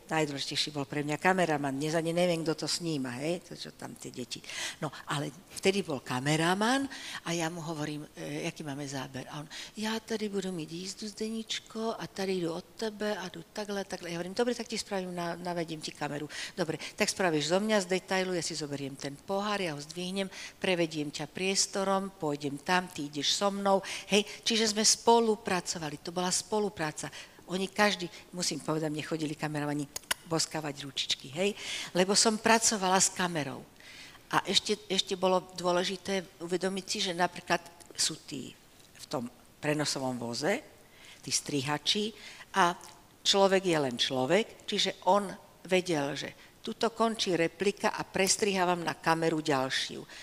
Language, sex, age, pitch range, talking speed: Slovak, female, 60-79, 155-205 Hz, 160 wpm